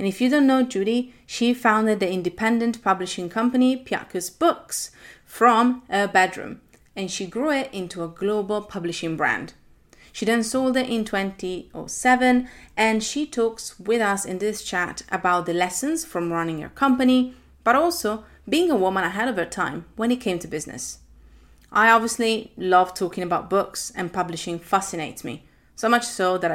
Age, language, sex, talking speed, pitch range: 30-49, English, female, 170 wpm, 185-240 Hz